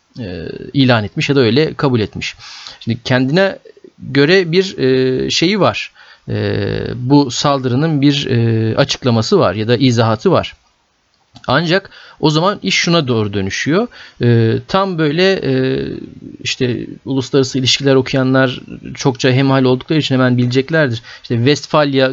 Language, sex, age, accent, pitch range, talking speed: Turkish, male, 40-59, native, 125-155 Hz, 115 wpm